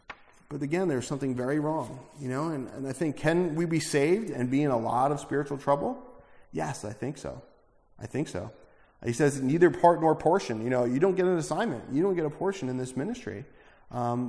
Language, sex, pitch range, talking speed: English, male, 125-150 Hz, 225 wpm